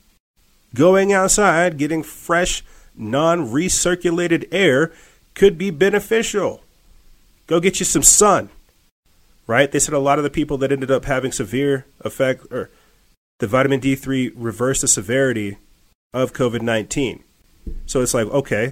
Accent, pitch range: American, 120-160 Hz